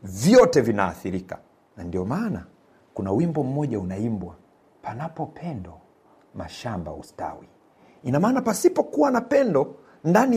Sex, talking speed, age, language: male, 105 wpm, 50-69, Swahili